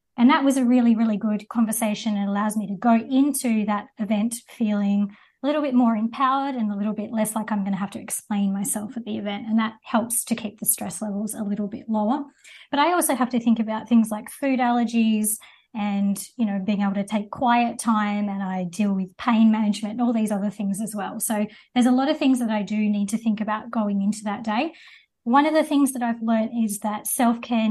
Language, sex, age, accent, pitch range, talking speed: English, female, 20-39, Australian, 210-240 Hz, 240 wpm